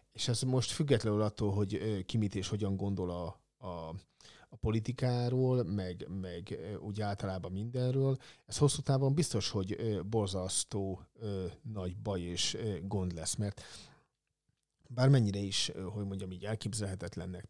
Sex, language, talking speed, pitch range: male, Hungarian, 125 wpm, 100-120 Hz